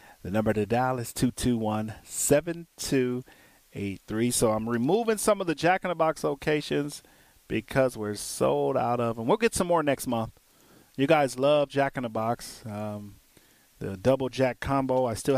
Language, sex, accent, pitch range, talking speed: English, male, American, 115-160 Hz, 170 wpm